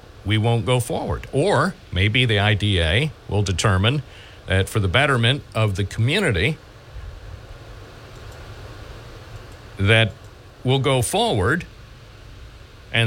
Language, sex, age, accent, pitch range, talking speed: English, male, 50-69, American, 100-120 Hz, 100 wpm